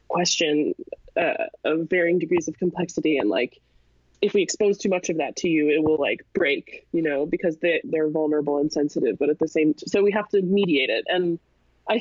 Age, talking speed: 20-39, 215 wpm